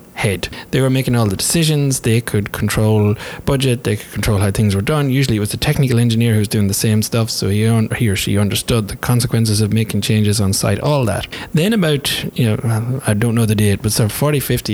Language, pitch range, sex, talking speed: English, 105-125 Hz, male, 250 wpm